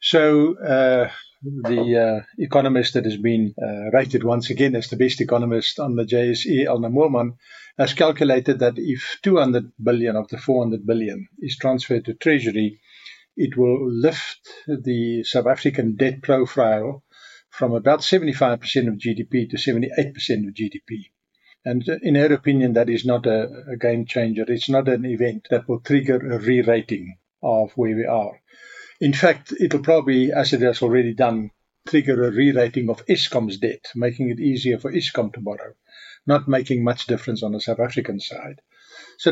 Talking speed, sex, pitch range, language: 165 wpm, male, 115-140 Hz, English